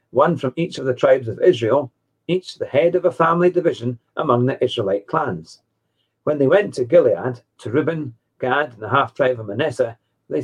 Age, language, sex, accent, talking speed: 50-69, English, male, British, 190 wpm